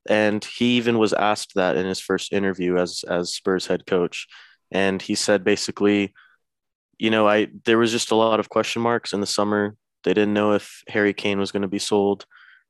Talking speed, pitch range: 210 wpm, 100-110 Hz